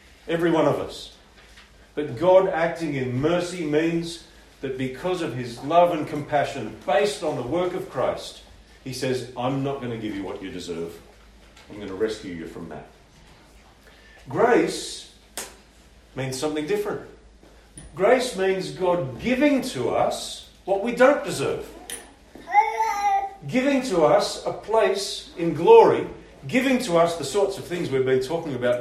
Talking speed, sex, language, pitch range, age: 150 wpm, male, English, 125-180 Hz, 50-69